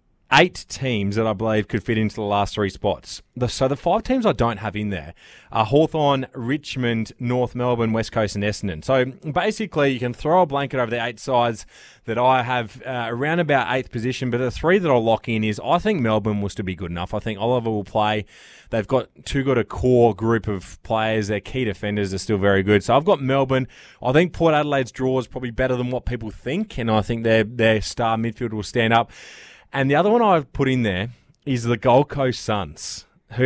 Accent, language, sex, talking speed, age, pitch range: Australian, English, male, 225 wpm, 20-39, 110-135 Hz